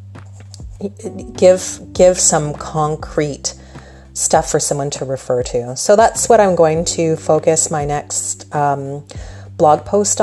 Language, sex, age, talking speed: English, female, 30-49, 130 wpm